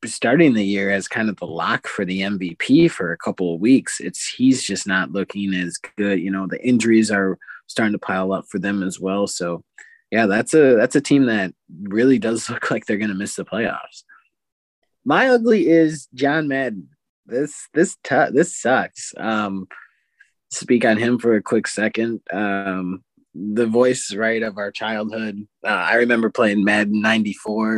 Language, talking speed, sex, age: English, 185 wpm, male, 20-39